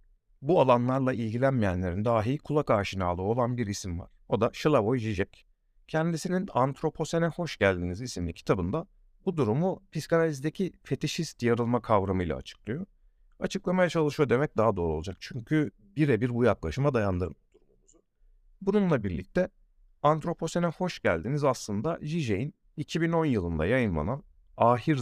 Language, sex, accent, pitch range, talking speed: Turkish, male, native, 105-150 Hz, 120 wpm